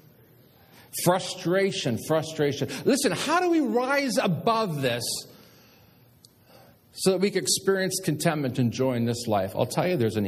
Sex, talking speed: male, 145 wpm